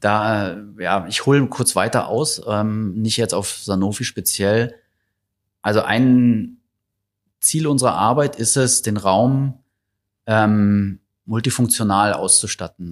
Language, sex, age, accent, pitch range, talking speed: German, male, 30-49, German, 95-115 Hz, 115 wpm